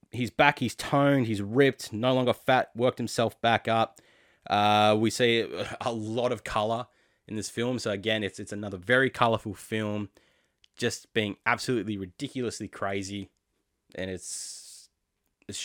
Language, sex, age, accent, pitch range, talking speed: English, male, 20-39, Australian, 95-115 Hz, 150 wpm